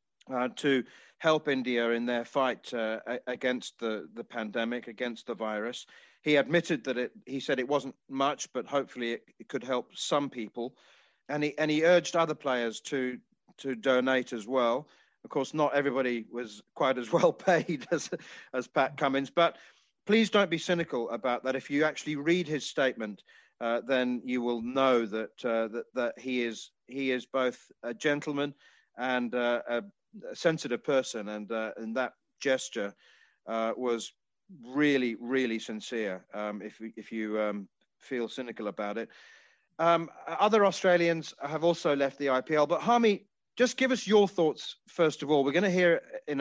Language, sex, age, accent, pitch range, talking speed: English, male, 40-59, British, 115-150 Hz, 175 wpm